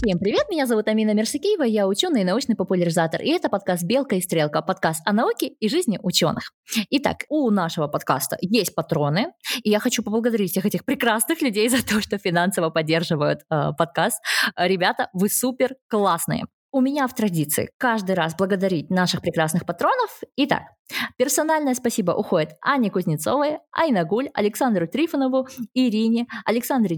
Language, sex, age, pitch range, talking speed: Russian, female, 20-39, 185-260 Hz, 155 wpm